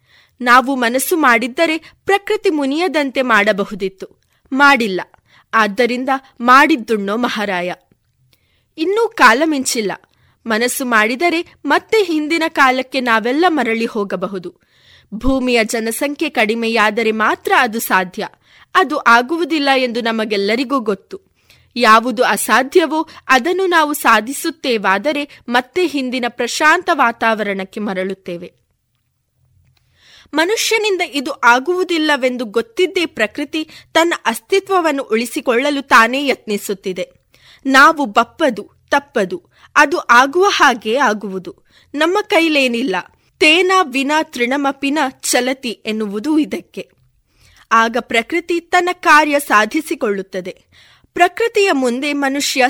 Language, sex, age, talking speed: Kannada, female, 20-39, 85 wpm